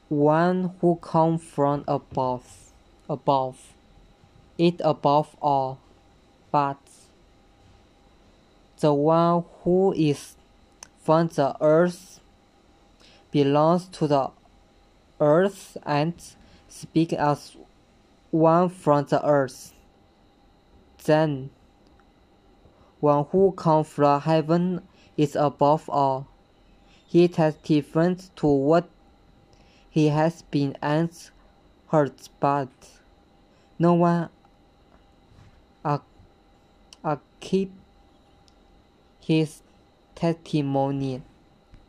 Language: English